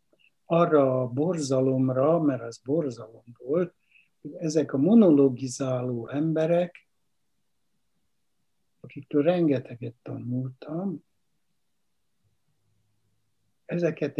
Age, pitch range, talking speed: 60-79, 125-165 Hz, 70 wpm